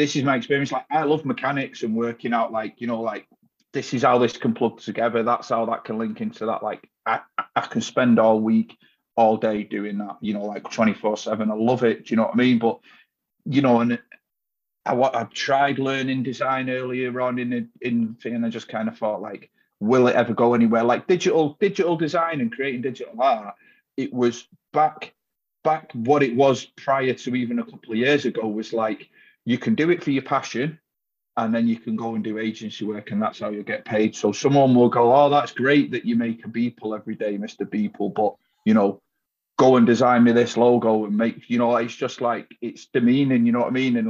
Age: 30-49